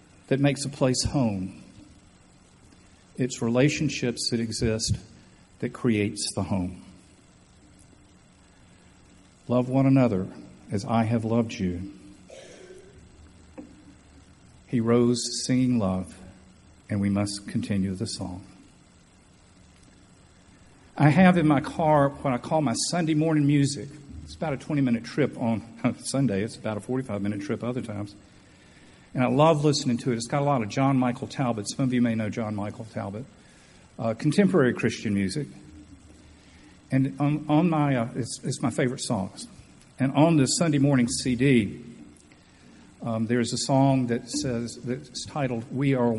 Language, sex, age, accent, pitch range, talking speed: English, male, 50-69, American, 100-135 Hz, 140 wpm